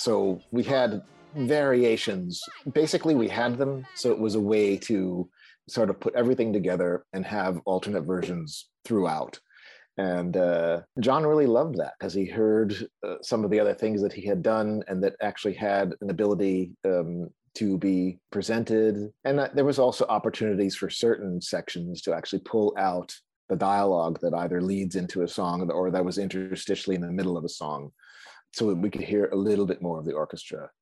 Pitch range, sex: 90-110 Hz, male